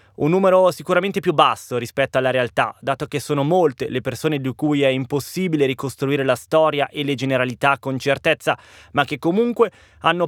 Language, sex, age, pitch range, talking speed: Italian, male, 20-39, 125-160 Hz, 175 wpm